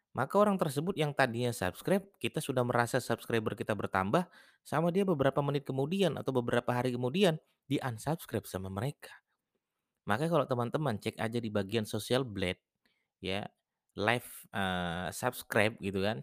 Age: 30-49